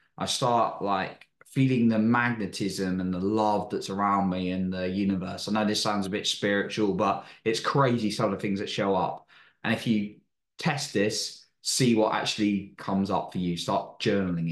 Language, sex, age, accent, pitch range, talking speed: English, male, 20-39, British, 95-110 Hz, 195 wpm